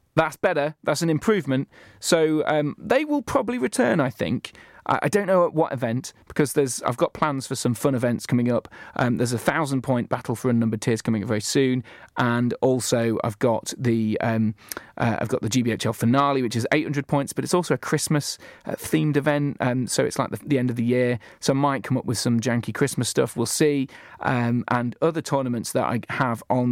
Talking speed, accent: 215 wpm, British